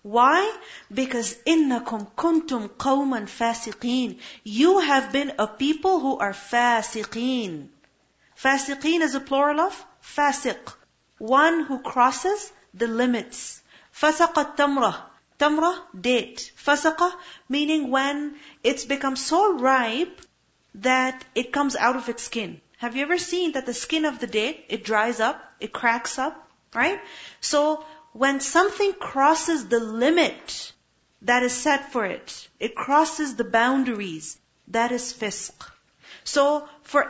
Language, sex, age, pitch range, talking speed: English, female, 40-59, 240-310 Hz, 130 wpm